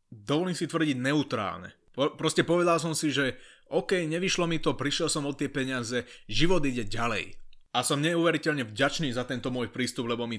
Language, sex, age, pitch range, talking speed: Slovak, male, 30-49, 120-155 Hz, 185 wpm